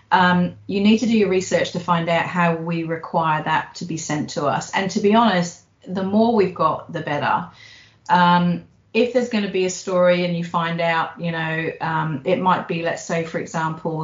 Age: 40-59